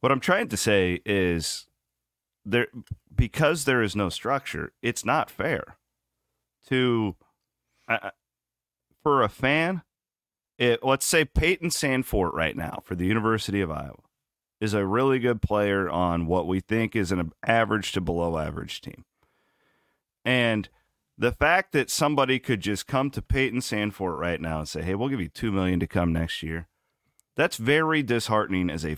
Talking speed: 160 wpm